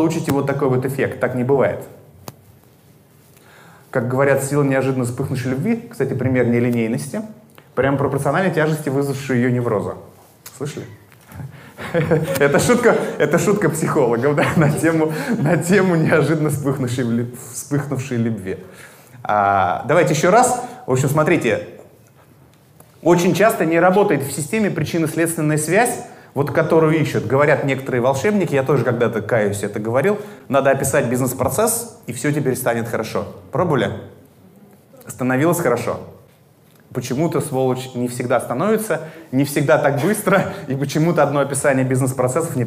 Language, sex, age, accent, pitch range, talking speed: Russian, male, 20-39, native, 125-160 Hz, 130 wpm